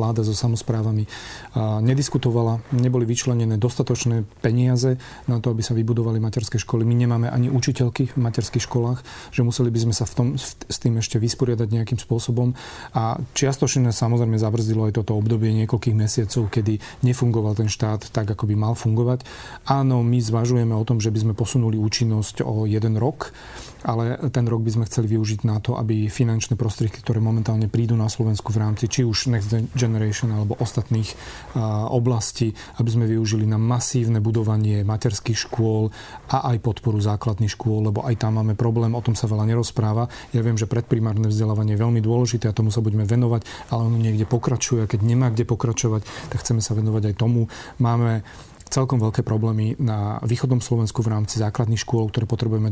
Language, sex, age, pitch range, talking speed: Slovak, male, 40-59, 110-120 Hz, 175 wpm